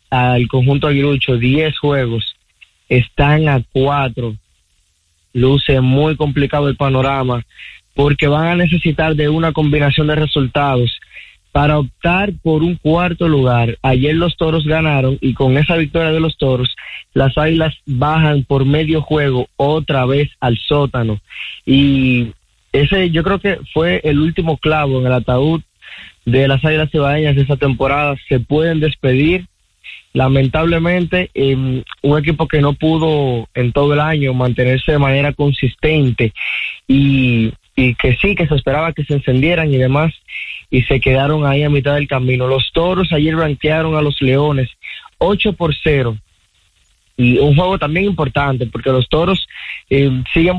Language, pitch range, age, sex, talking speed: Spanish, 130-155 Hz, 20-39, male, 150 wpm